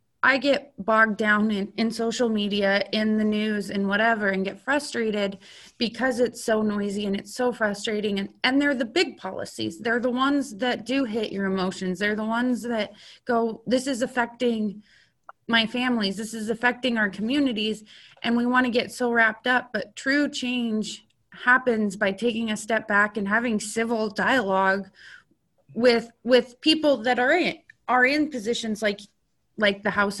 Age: 20-39